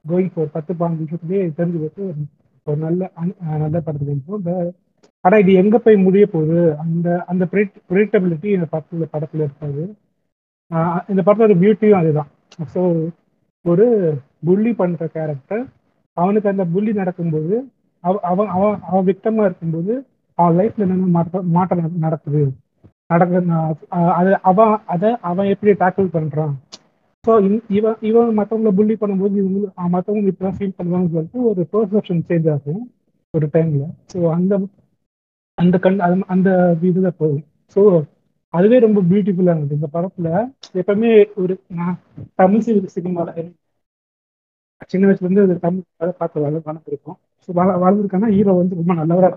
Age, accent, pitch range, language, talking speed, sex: 30-49, native, 165-200 Hz, Tamil, 105 wpm, male